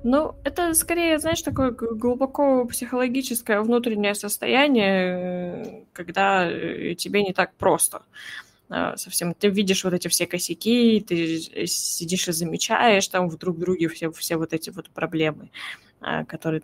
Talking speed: 130 wpm